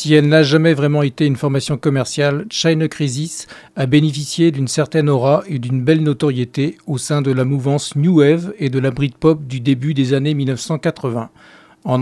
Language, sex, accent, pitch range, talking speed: French, male, French, 135-155 Hz, 185 wpm